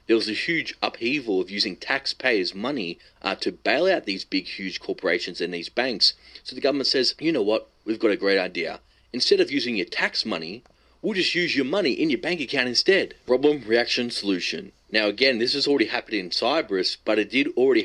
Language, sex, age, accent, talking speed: English, male, 30-49, Australian, 210 wpm